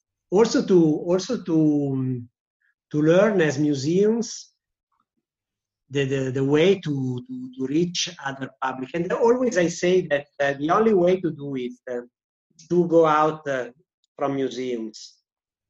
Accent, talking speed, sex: Italian, 150 wpm, male